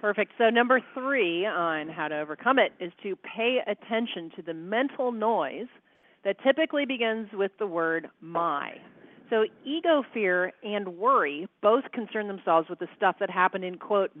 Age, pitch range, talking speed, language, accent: 40-59, 180-230 Hz, 165 wpm, English, American